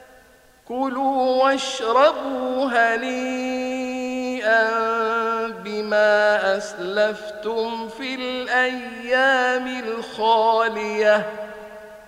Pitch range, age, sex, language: 210-230 Hz, 50-69, male, Arabic